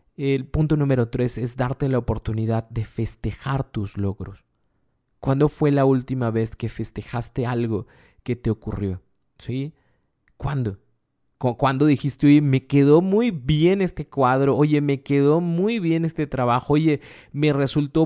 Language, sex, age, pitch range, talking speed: Spanish, male, 30-49, 125-155 Hz, 145 wpm